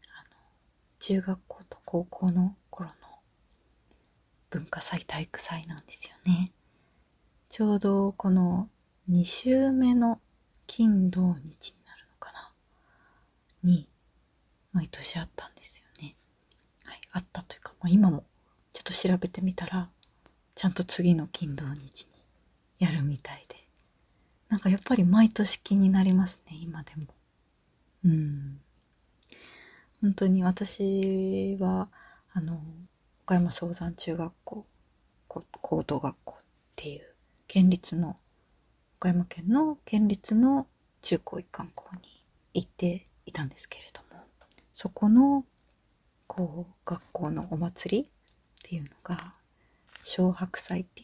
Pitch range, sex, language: 170-195 Hz, female, Japanese